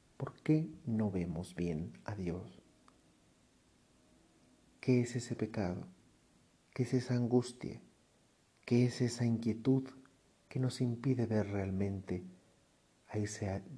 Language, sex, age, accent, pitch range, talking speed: Spanish, male, 50-69, Mexican, 100-120 Hz, 115 wpm